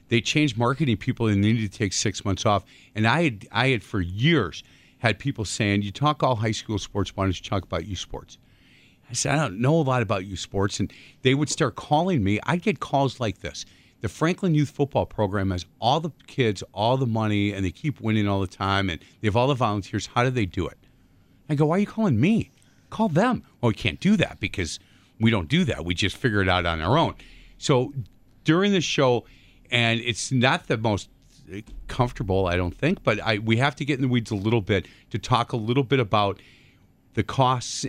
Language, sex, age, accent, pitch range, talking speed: English, male, 40-59, American, 100-135 Hz, 230 wpm